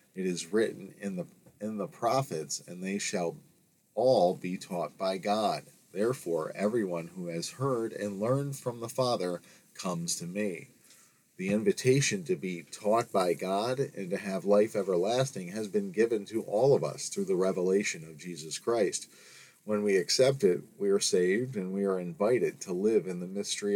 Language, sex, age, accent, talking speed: English, male, 40-59, American, 175 wpm